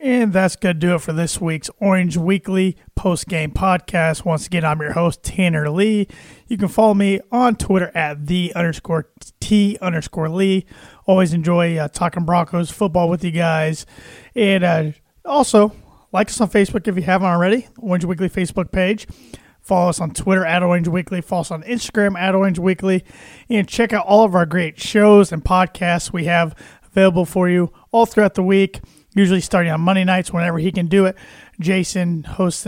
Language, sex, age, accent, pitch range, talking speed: English, male, 30-49, American, 170-195 Hz, 185 wpm